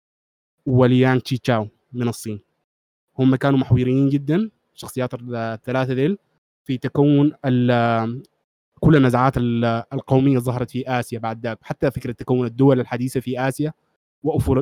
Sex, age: male, 20-39